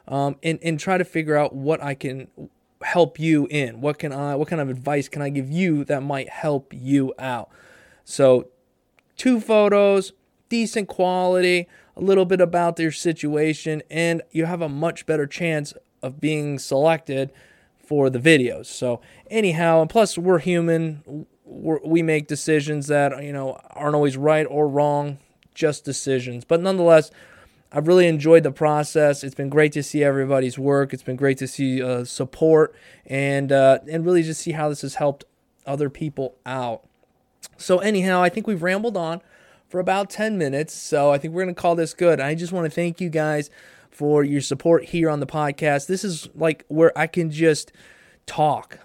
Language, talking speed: English, 185 wpm